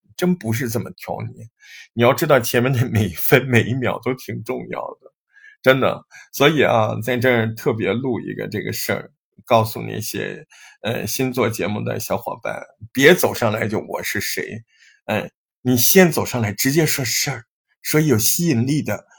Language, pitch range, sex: Chinese, 125-205 Hz, male